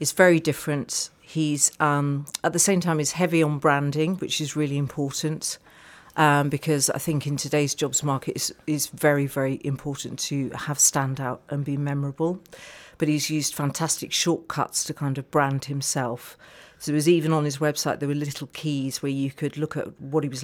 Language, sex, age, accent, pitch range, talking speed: English, female, 50-69, British, 140-155 Hz, 190 wpm